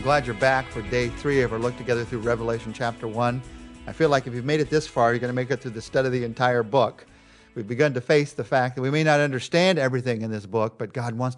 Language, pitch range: English, 115-140 Hz